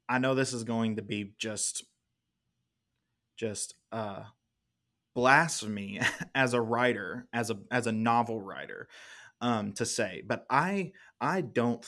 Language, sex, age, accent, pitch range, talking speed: English, male, 20-39, American, 110-125 Hz, 135 wpm